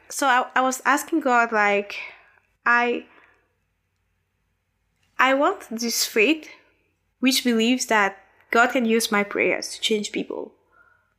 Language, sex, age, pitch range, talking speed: English, female, 20-39, 215-270 Hz, 125 wpm